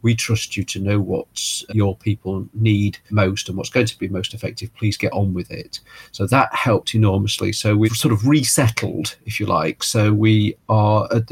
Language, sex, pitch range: English, male, 100-115 Hz